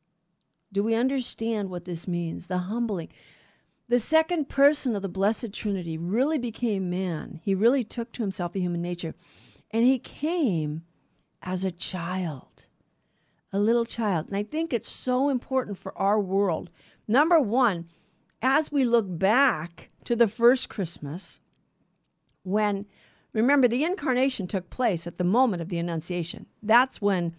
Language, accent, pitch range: English, American, 185-255 Hz